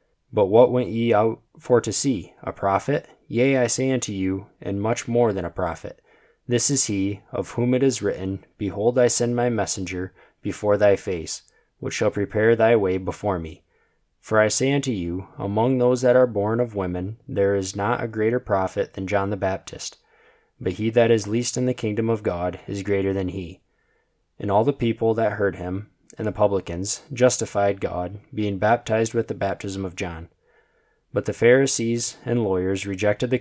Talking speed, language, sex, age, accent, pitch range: 190 wpm, English, male, 20-39, American, 100-120 Hz